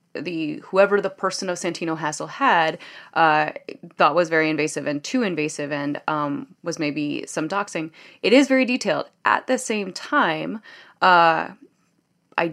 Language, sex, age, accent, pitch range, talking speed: English, female, 20-39, American, 160-195 Hz, 155 wpm